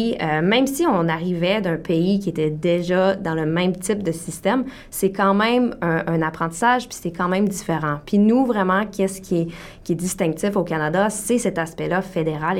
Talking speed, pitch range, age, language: 200 wpm, 170-215 Hz, 20-39, French